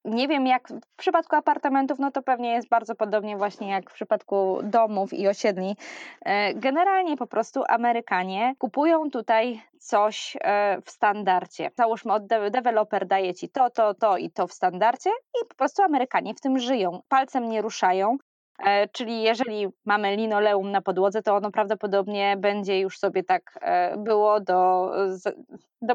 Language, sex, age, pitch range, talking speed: Polish, female, 20-39, 200-255 Hz, 155 wpm